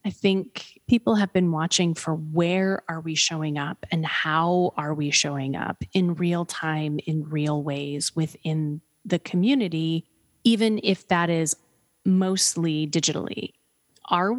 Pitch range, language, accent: 155-180 Hz, English, American